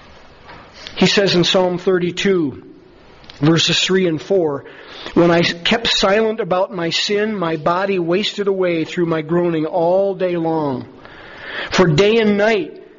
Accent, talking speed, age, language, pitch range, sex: American, 140 wpm, 40-59, English, 170-210 Hz, male